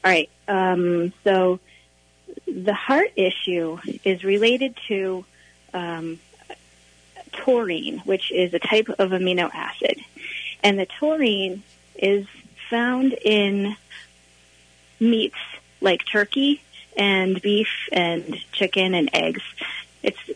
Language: English